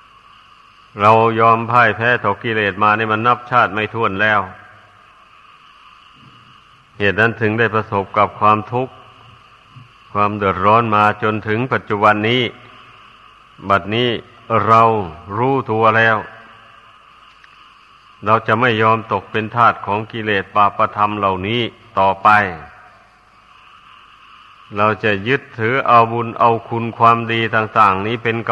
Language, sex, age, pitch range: Thai, male, 60-79, 105-115 Hz